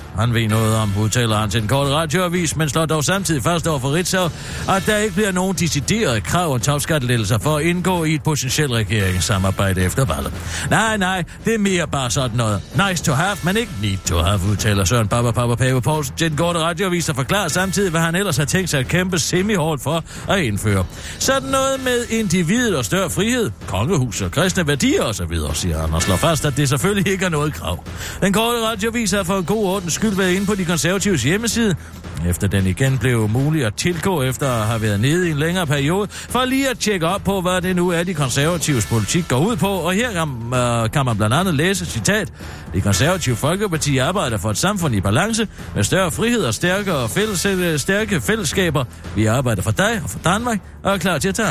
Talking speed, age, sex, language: 215 wpm, 60-79, male, Danish